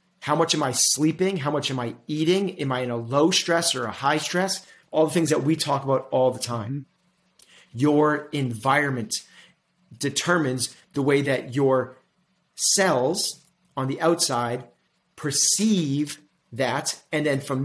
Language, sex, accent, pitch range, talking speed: English, male, American, 140-180 Hz, 155 wpm